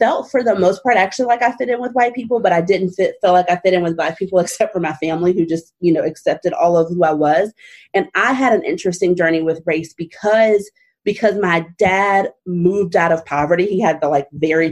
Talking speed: 245 wpm